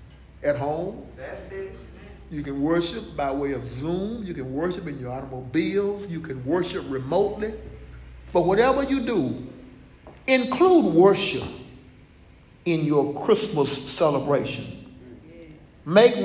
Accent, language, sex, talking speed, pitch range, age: American, English, male, 110 wpm, 130-175 Hz, 50-69